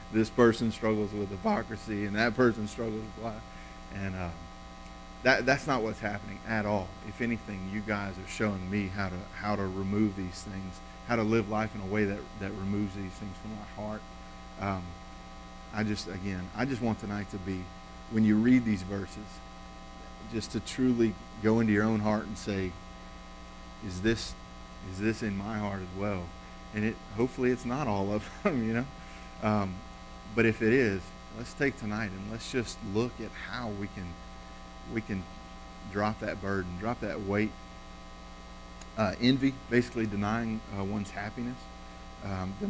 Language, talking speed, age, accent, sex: English, 175 wpm, 40-59, American, male